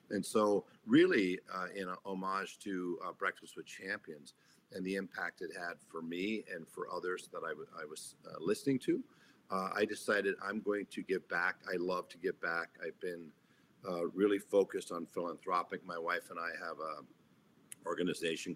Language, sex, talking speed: English, male, 185 wpm